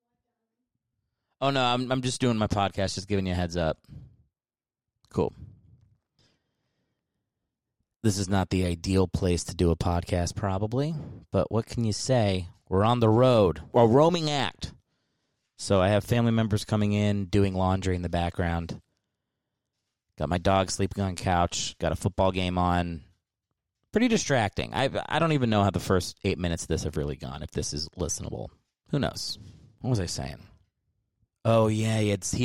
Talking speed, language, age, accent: 175 wpm, English, 30-49, American